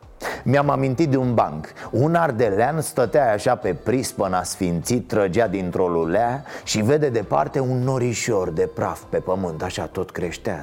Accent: native